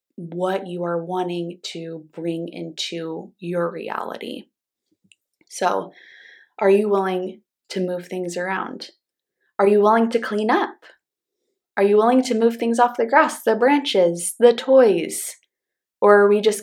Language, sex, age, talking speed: English, female, 20-39, 145 wpm